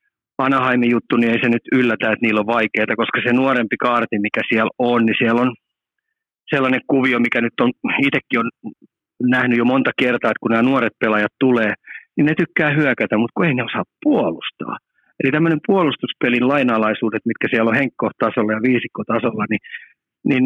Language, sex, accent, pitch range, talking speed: Finnish, male, native, 115-135 Hz, 175 wpm